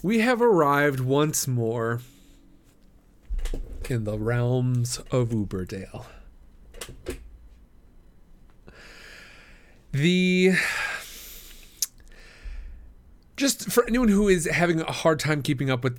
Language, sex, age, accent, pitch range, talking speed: English, male, 40-59, American, 120-155 Hz, 85 wpm